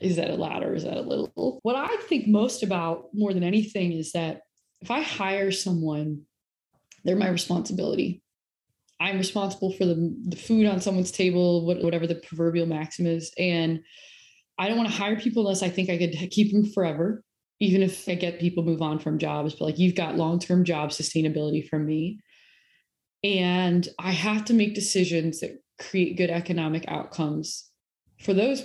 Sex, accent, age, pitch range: female, American, 20-39, 160-195 Hz